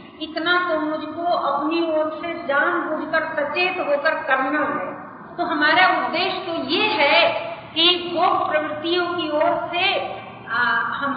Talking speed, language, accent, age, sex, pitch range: 135 wpm, Hindi, native, 50-69, female, 285-345 Hz